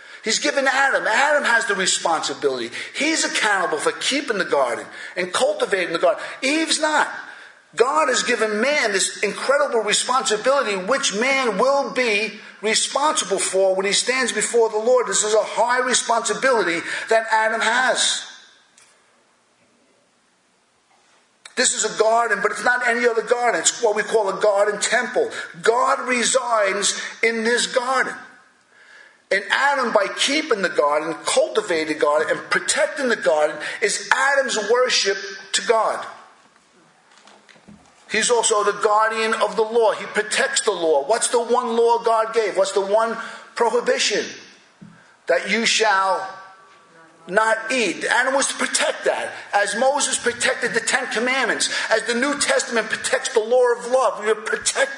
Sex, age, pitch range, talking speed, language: male, 50-69, 215-270 Hz, 145 wpm, English